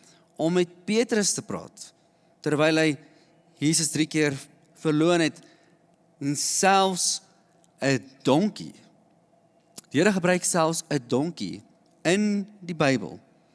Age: 40-59